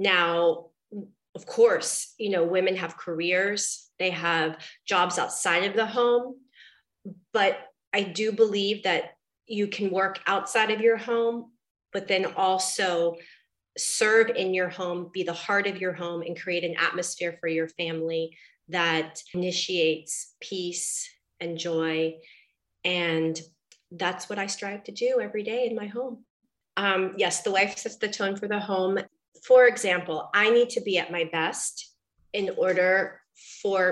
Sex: female